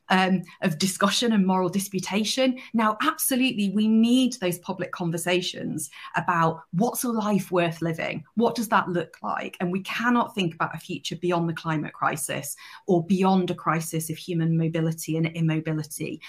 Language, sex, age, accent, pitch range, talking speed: English, female, 30-49, British, 165-195 Hz, 160 wpm